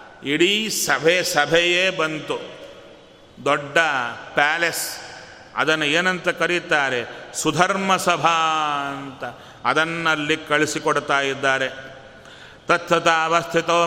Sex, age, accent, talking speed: male, 40-59, native, 70 wpm